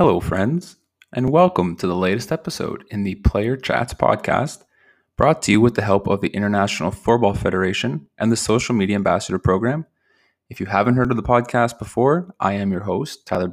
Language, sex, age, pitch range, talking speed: English, male, 20-39, 100-120 Hz, 190 wpm